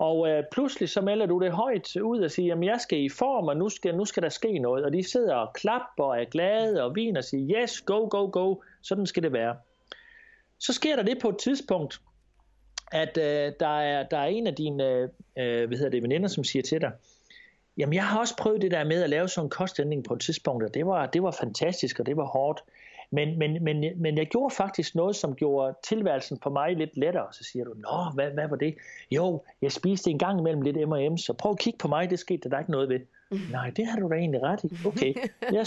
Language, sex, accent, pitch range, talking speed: Danish, male, native, 145-205 Hz, 250 wpm